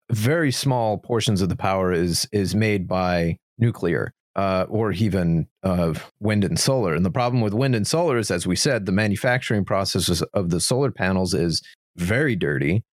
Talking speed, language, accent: 180 wpm, English, American